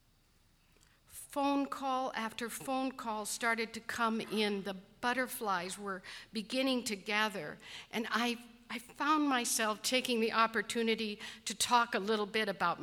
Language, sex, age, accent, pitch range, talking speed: English, female, 50-69, American, 210-260 Hz, 135 wpm